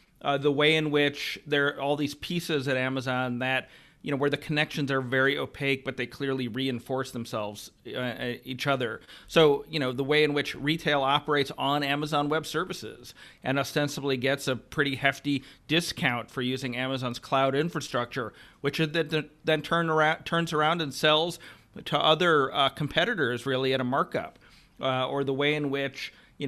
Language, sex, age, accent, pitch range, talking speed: English, male, 40-59, American, 130-145 Hz, 175 wpm